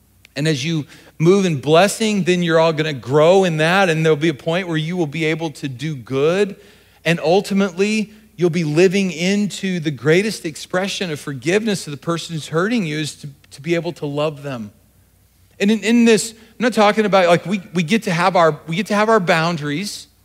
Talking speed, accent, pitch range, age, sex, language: 215 wpm, American, 130-180 Hz, 40-59, male, English